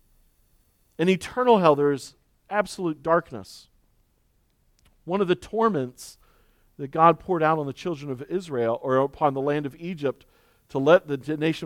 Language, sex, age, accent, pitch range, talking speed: English, male, 40-59, American, 125-170 Hz, 155 wpm